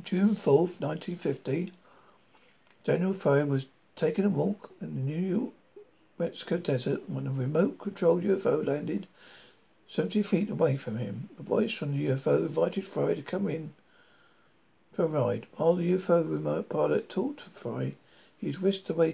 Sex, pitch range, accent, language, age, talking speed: male, 145-190 Hz, British, English, 60-79, 165 wpm